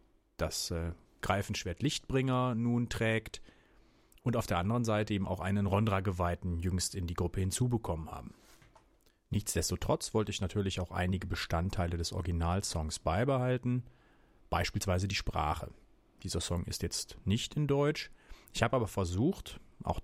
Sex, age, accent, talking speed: male, 30-49, German, 140 wpm